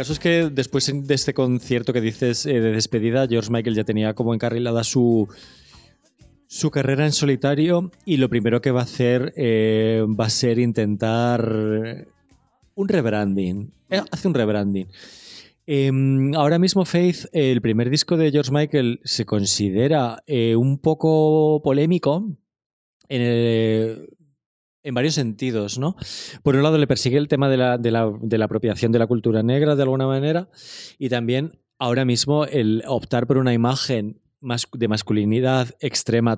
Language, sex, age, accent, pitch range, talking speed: Spanish, male, 20-39, Spanish, 115-140 Hz, 160 wpm